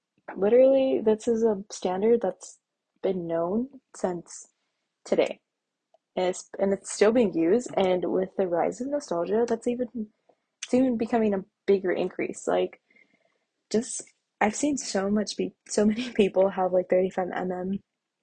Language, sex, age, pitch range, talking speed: English, female, 20-39, 190-215 Hz, 140 wpm